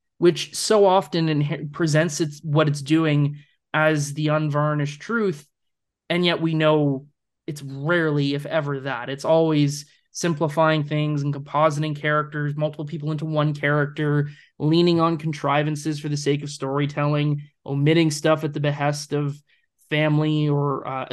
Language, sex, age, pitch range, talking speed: English, male, 20-39, 145-165 Hz, 140 wpm